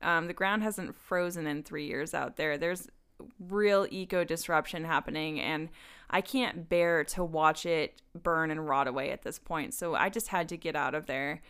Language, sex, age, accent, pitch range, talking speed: English, female, 20-39, American, 160-215 Hz, 200 wpm